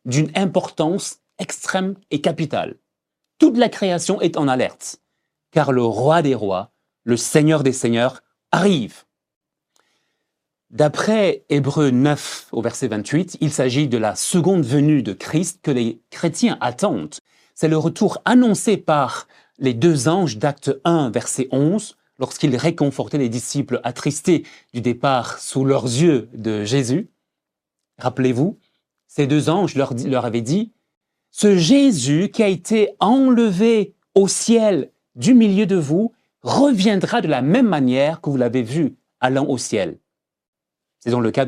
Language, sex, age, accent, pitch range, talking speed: French, male, 30-49, French, 130-190 Hz, 145 wpm